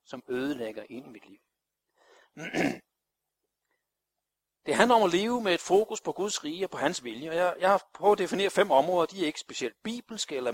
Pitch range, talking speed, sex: 145-210 Hz, 205 wpm, male